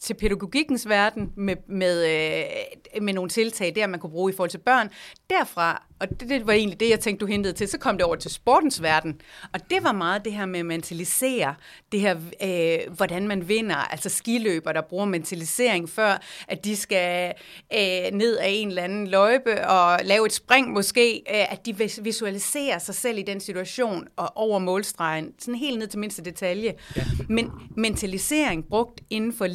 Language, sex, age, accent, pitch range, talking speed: Danish, female, 30-49, native, 190-245 Hz, 190 wpm